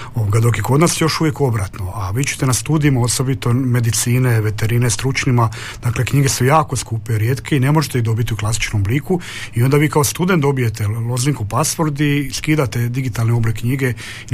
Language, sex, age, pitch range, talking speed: Croatian, male, 40-59, 110-135 Hz, 185 wpm